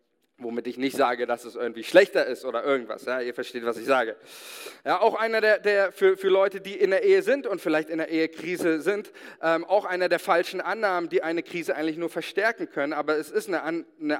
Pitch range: 135-185 Hz